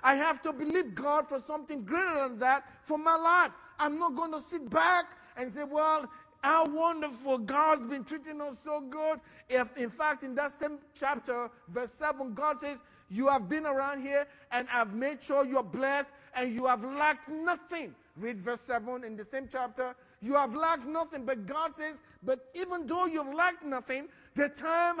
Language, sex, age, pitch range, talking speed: English, male, 50-69, 250-305 Hz, 190 wpm